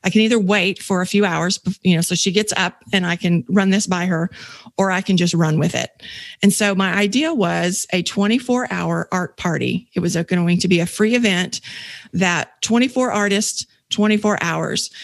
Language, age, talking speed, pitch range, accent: English, 40-59, 200 wpm, 180-210 Hz, American